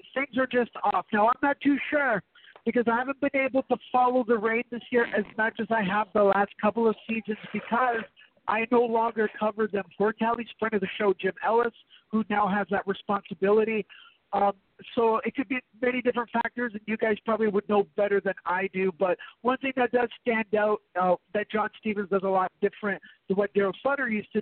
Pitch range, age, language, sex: 205-240 Hz, 50-69, English, male